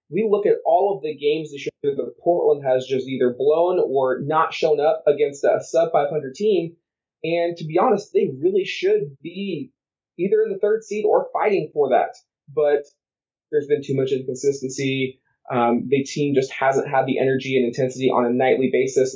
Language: English